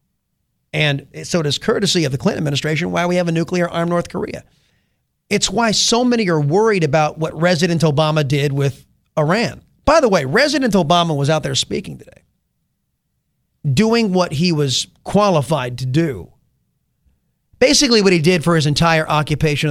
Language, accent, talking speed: English, American, 165 wpm